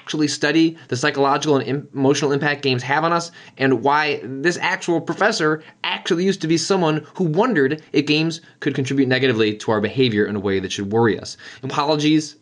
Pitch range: 95-135 Hz